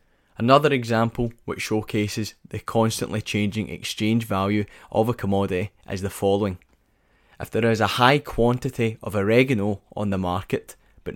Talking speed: 145 wpm